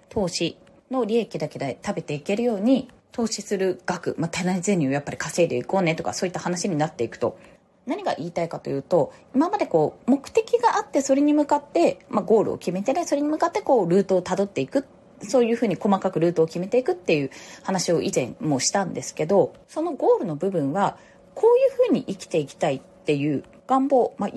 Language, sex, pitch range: Japanese, female, 175-295 Hz